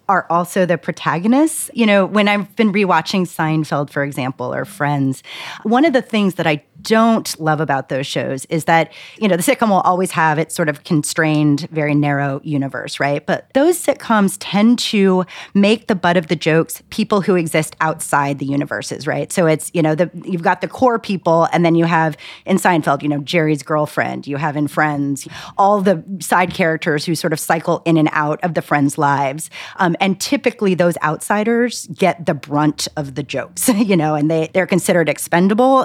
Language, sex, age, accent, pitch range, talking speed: English, female, 30-49, American, 160-215 Hz, 200 wpm